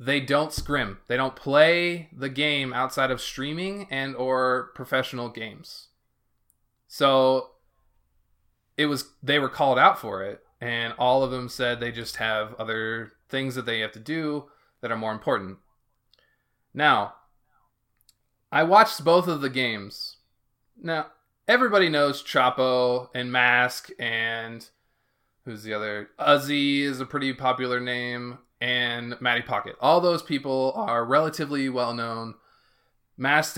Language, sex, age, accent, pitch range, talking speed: English, male, 20-39, American, 120-140 Hz, 135 wpm